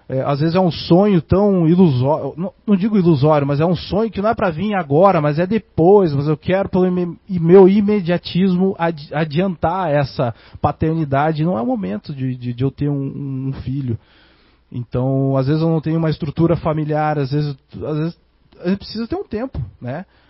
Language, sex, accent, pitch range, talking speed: Portuguese, male, Brazilian, 140-175 Hz, 190 wpm